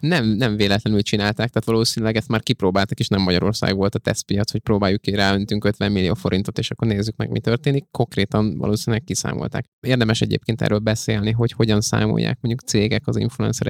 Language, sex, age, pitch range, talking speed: Hungarian, male, 20-39, 105-120 Hz, 185 wpm